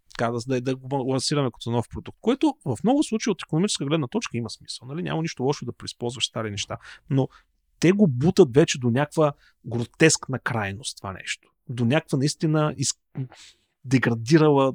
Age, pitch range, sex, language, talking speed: 40-59, 120-165 Hz, male, Bulgarian, 160 wpm